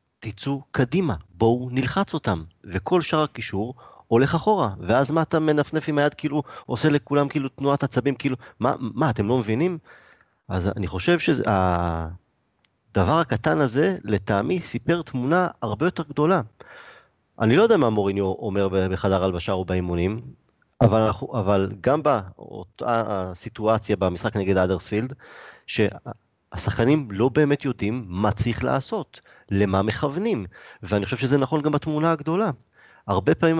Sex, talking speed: male, 140 wpm